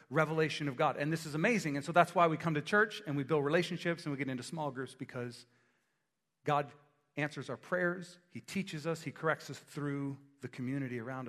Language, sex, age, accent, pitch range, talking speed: English, male, 40-59, American, 140-170 Hz, 215 wpm